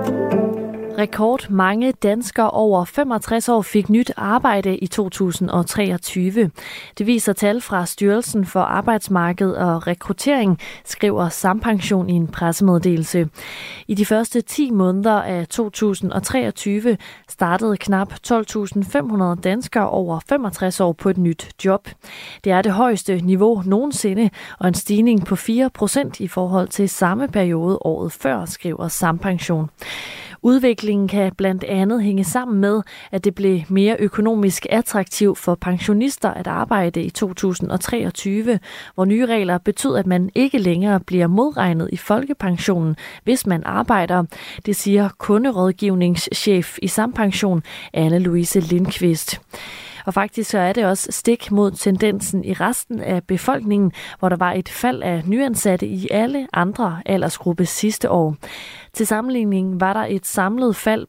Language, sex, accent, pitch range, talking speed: Danish, female, native, 185-220 Hz, 135 wpm